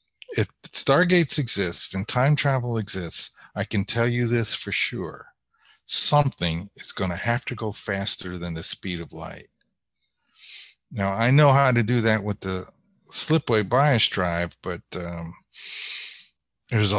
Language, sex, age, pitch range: English, male, 50-69, 95-120 Hz